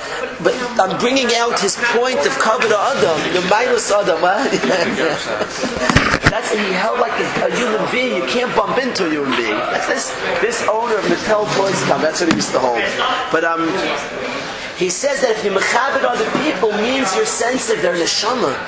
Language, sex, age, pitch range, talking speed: English, male, 40-59, 190-240 Hz, 195 wpm